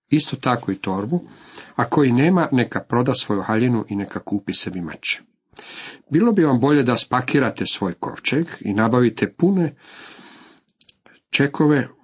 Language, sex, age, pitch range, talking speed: Croatian, male, 50-69, 110-145 Hz, 140 wpm